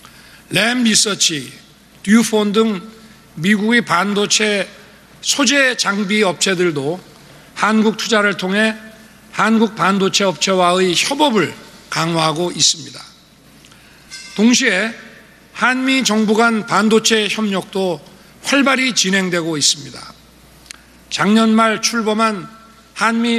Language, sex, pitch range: Korean, male, 185-225 Hz